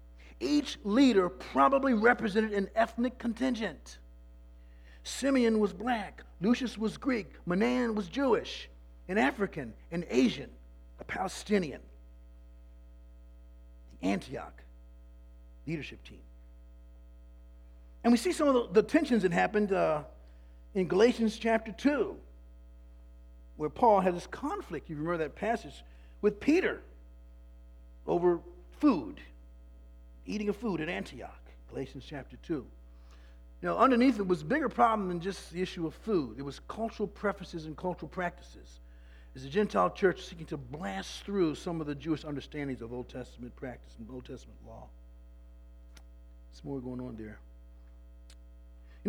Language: English